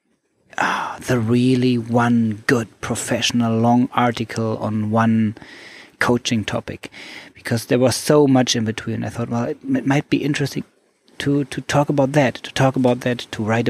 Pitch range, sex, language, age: 115-145 Hz, male, English, 30-49